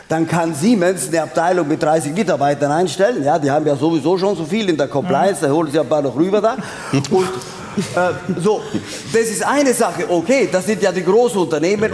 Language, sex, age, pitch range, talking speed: German, male, 50-69, 130-175 Hz, 205 wpm